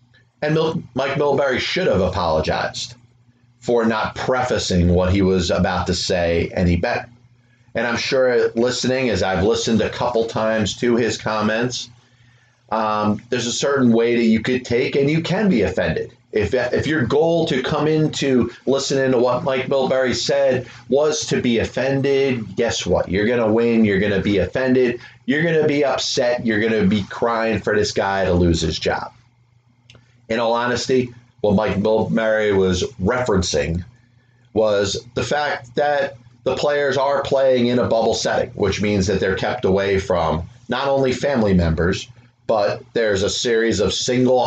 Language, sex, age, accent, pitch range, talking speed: English, male, 30-49, American, 110-125 Hz, 165 wpm